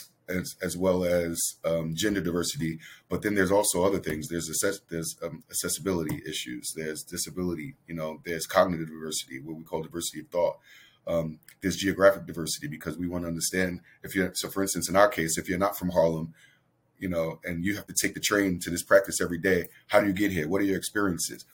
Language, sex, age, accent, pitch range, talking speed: English, male, 30-49, American, 85-95 Hz, 215 wpm